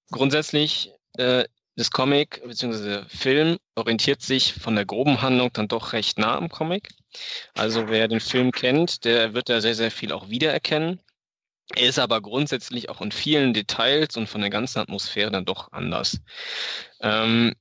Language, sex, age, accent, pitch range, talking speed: German, male, 20-39, German, 105-130 Hz, 165 wpm